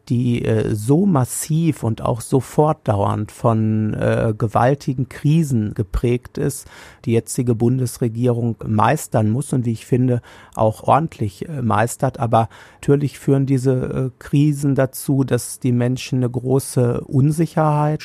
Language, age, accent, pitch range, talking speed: German, 50-69, German, 115-135 Hz, 130 wpm